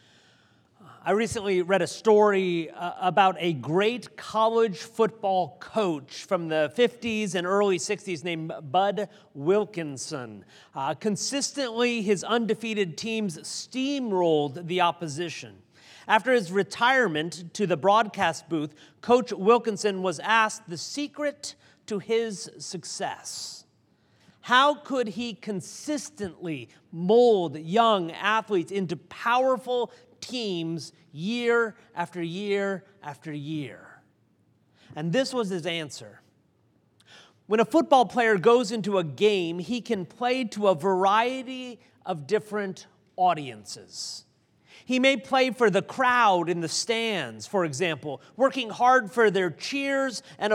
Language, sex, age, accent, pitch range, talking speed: English, male, 40-59, American, 170-230 Hz, 115 wpm